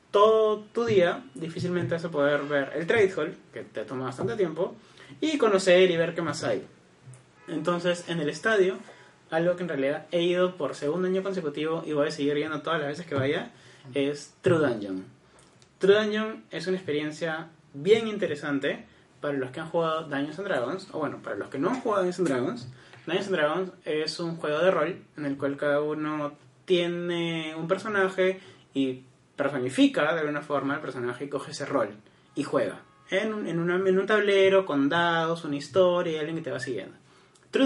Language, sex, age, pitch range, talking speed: Spanish, male, 30-49, 145-185 Hz, 195 wpm